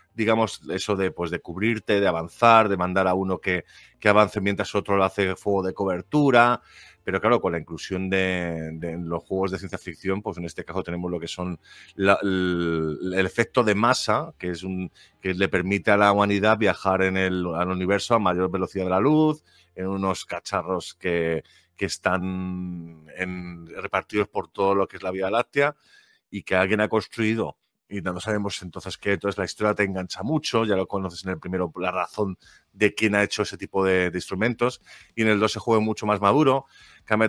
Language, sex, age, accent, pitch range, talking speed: Spanish, male, 30-49, Spanish, 90-105 Hz, 210 wpm